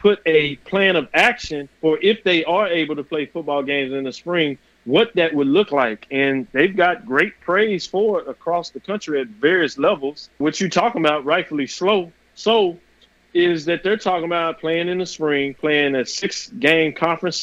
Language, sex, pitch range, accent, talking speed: English, male, 140-170 Hz, American, 190 wpm